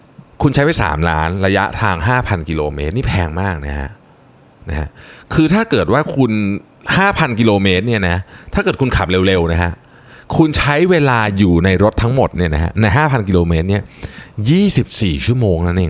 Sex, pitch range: male, 90-135 Hz